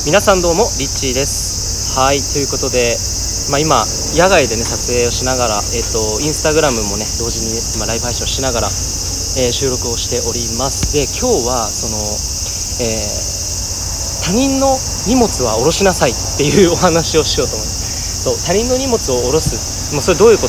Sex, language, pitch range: male, Japanese, 100-140 Hz